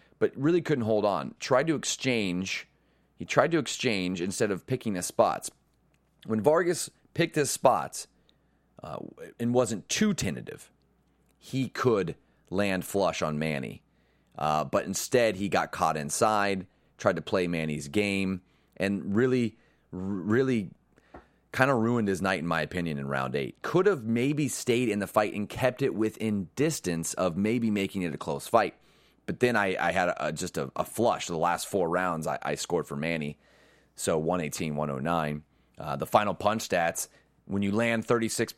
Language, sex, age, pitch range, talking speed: English, male, 30-49, 85-120 Hz, 165 wpm